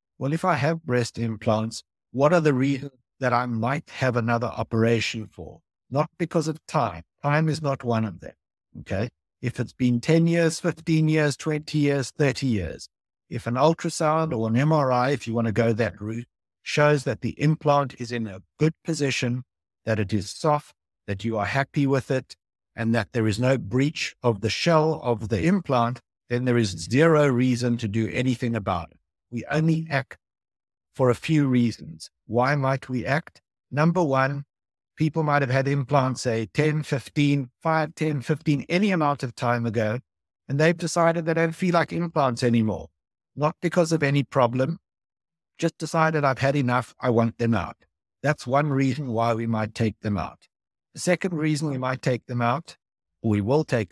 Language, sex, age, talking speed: English, male, 60-79, 185 wpm